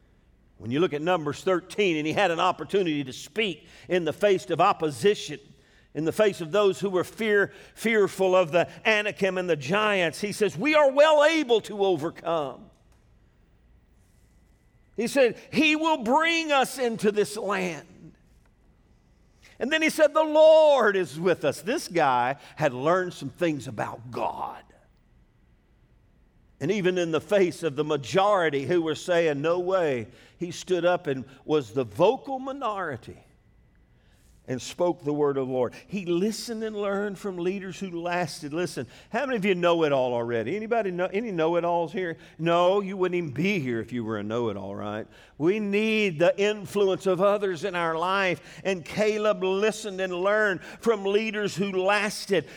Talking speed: 170 wpm